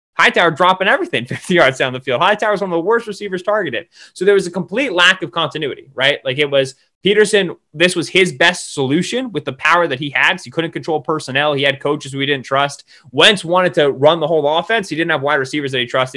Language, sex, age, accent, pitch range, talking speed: English, male, 20-39, American, 145-210 Hz, 240 wpm